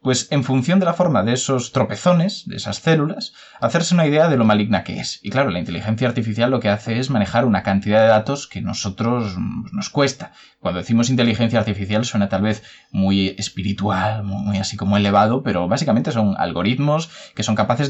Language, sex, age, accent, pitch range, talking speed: Spanish, male, 20-39, Spanish, 105-155 Hz, 200 wpm